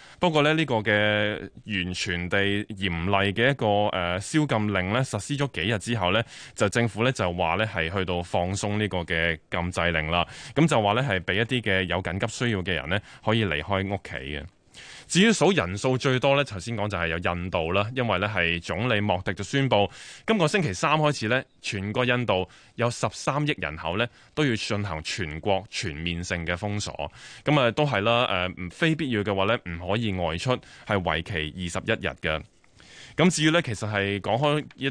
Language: Chinese